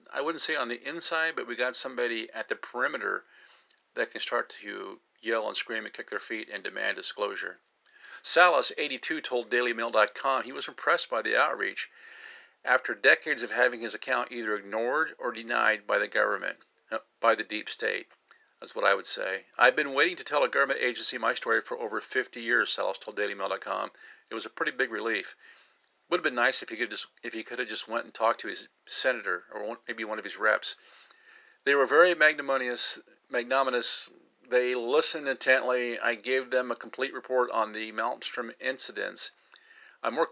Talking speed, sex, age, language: 190 wpm, male, 50-69, English